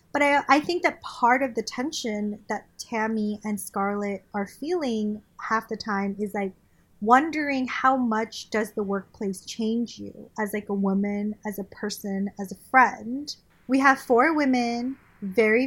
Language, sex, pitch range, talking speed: English, female, 210-260 Hz, 165 wpm